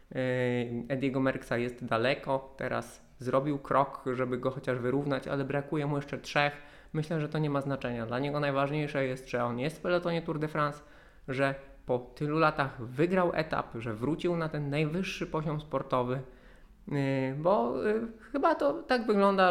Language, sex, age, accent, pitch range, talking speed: Polish, male, 20-39, native, 125-155 Hz, 160 wpm